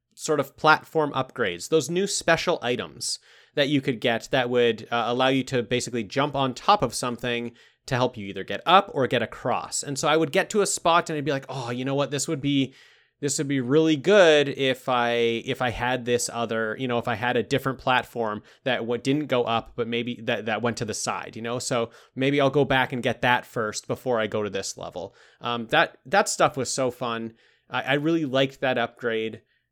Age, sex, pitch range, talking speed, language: 30-49, male, 120-145 Hz, 230 wpm, English